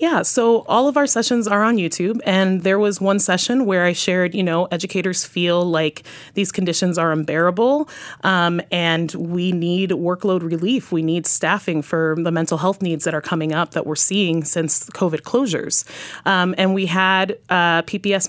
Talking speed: 185 wpm